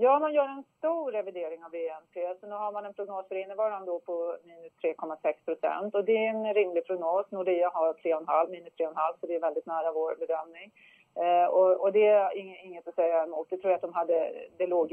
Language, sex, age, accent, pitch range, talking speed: English, female, 30-49, Swedish, 170-220 Hz, 230 wpm